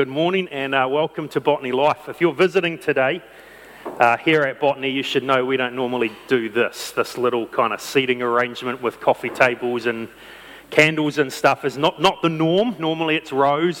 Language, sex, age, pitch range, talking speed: English, male, 30-49, 140-180 Hz, 195 wpm